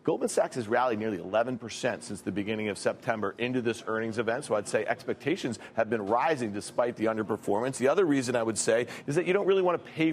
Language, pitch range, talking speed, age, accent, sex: English, 125-160 Hz, 235 wpm, 40-59, American, male